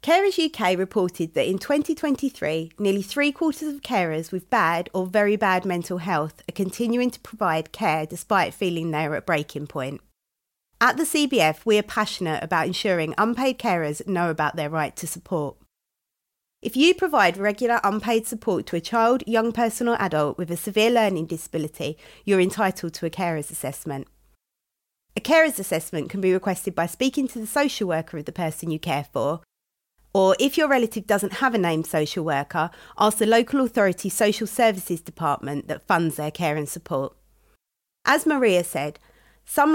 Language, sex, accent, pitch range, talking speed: English, female, British, 160-220 Hz, 170 wpm